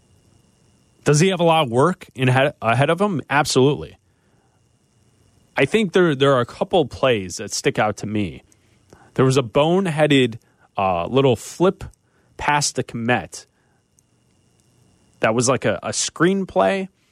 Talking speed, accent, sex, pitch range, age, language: 140 wpm, American, male, 110-145 Hz, 30-49, English